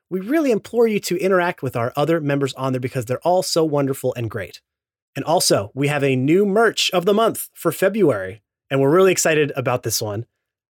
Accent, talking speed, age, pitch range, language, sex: American, 215 wpm, 30-49, 130-180 Hz, English, male